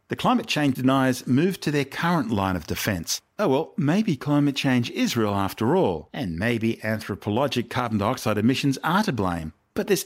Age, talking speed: 50-69, 185 wpm